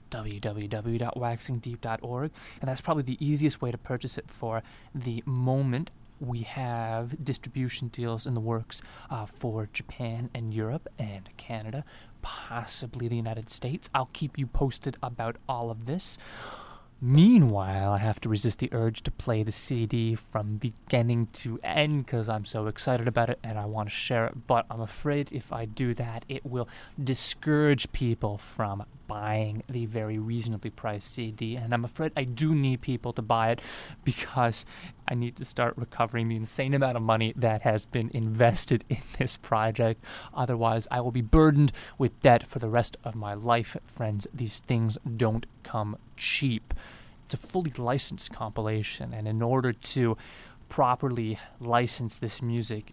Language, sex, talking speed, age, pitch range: English, male, 165 wpm, 20-39, 110-130 Hz